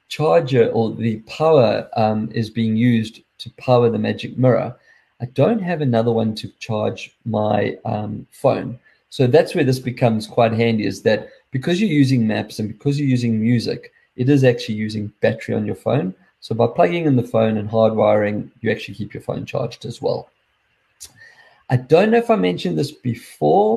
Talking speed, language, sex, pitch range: 185 wpm, English, male, 110-135 Hz